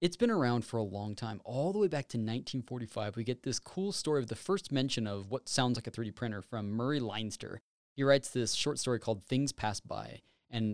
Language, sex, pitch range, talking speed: English, male, 110-155 Hz, 235 wpm